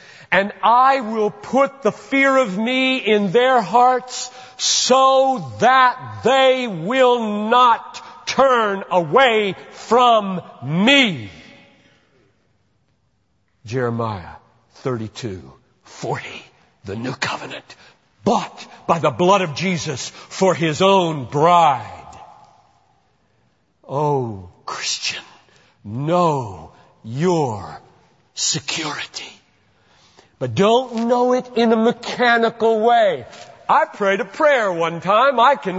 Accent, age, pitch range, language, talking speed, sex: American, 50-69, 180-260 Hz, English, 95 wpm, male